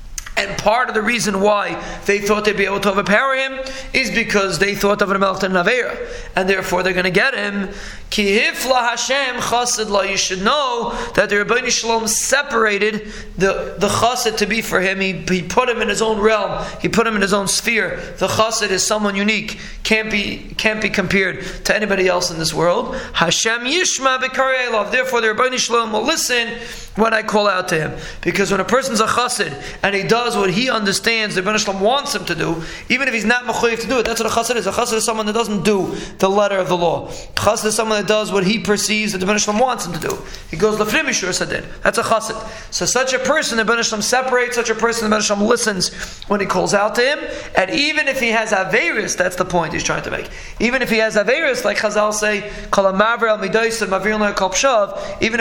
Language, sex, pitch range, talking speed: English, male, 195-230 Hz, 210 wpm